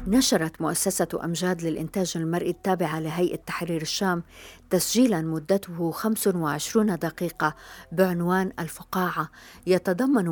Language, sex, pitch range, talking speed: Arabic, female, 160-185 Hz, 95 wpm